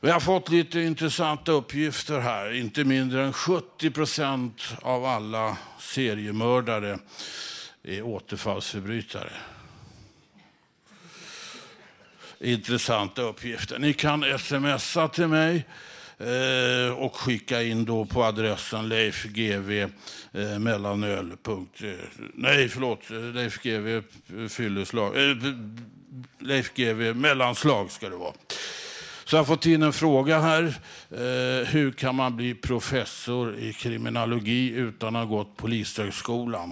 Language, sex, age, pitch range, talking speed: Swedish, male, 60-79, 110-135 Hz, 95 wpm